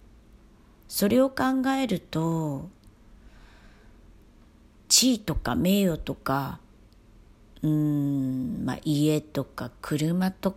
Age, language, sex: 40-59, Japanese, female